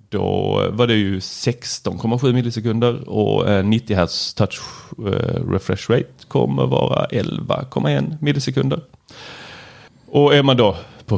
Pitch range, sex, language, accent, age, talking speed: 105-145 Hz, male, Swedish, native, 30-49, 115 wpm